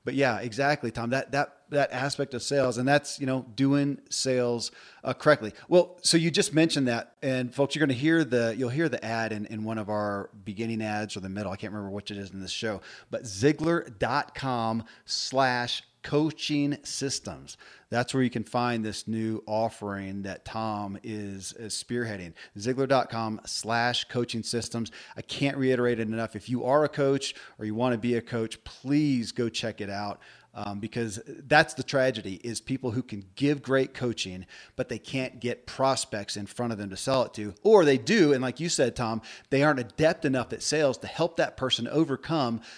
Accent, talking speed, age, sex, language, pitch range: American, 195 wpm, 40-59, male, English, 110-140 Hz